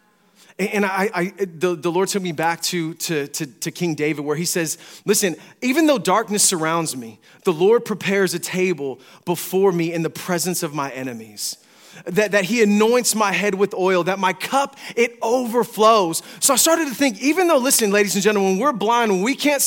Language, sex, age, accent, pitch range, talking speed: English, male, 30-49, American, 185-295 Hz, 205 wpm